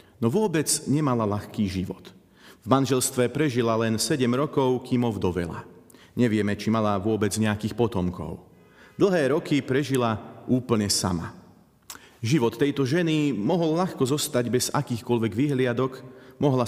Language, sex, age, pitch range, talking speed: Slovak, male, 40-59, 115-145 Hz, 120 wpm